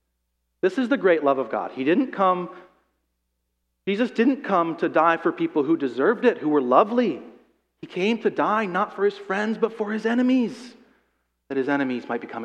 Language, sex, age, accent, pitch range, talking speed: English, male, 40-59, American, 125-190 Hz, 195 wpm